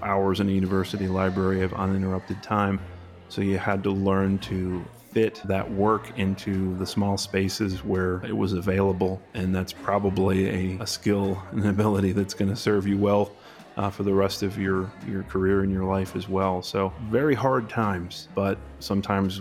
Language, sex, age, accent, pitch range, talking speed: English, male, 30-49, American, 95-105 Hz, 180 wpm